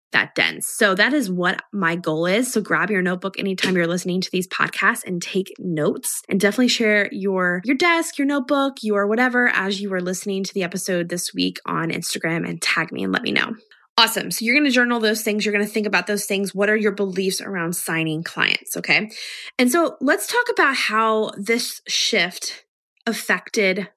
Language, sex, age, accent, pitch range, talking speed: English, female, 20-39, American, 190-235 Hz, 205 wpm